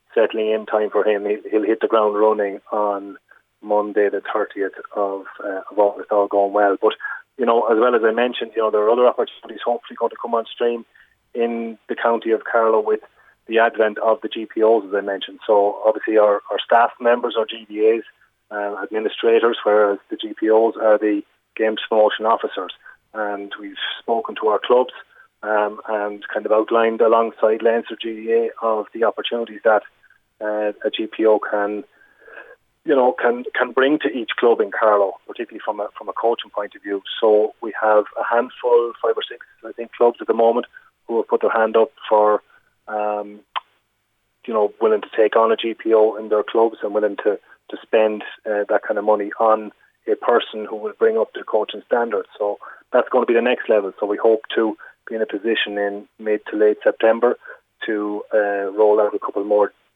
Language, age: English, 30-49